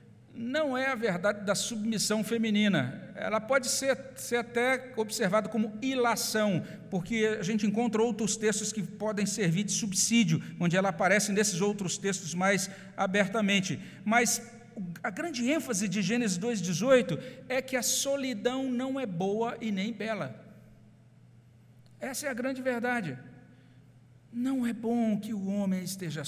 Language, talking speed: Portuguese, 145 wpm